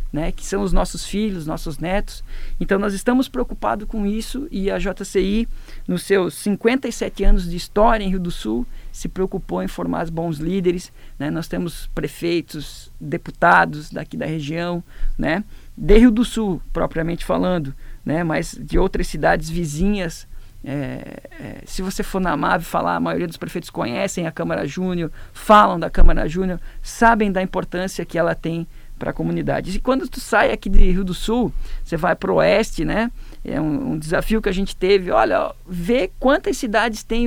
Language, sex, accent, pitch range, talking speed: Portuguese, male, Brazilian, 165-210 Hz, 180 wpm